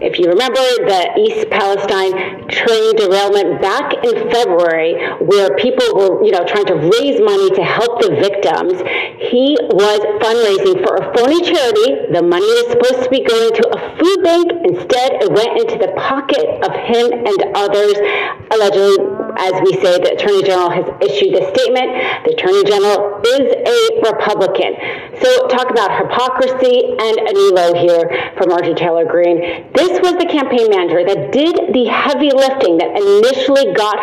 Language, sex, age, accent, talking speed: English, female, 40-59, American, 170 wpm